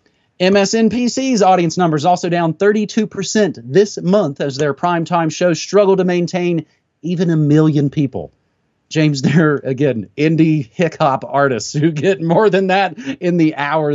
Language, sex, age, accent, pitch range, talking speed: English, male, 30-49, American, 130-180 Hz, 140 wpm